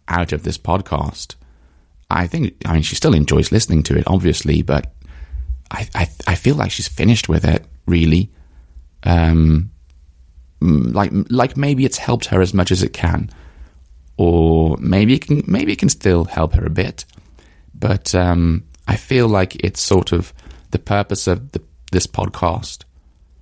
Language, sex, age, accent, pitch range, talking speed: English, male, 30-49, British, 75-95 Hz, 165 wpm